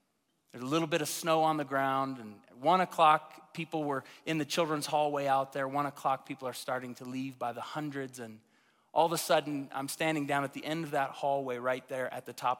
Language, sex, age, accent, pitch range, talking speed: English, male, 30-49, American, 115-135 Hz, 240 wpm